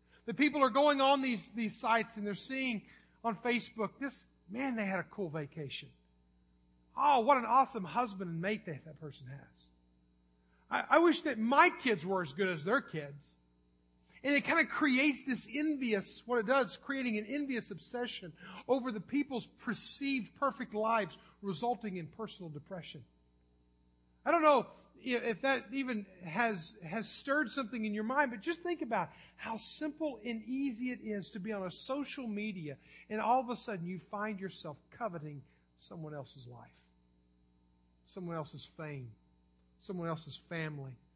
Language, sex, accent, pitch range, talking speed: English, male, American, 145-240 Hz, 165 wpm